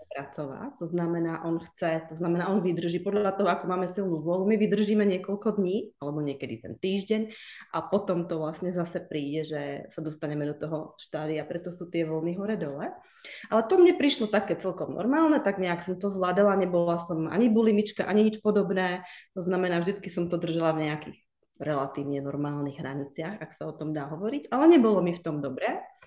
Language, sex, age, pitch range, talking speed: Czech, female, 20-39, 155-200 Hz, 195 wpm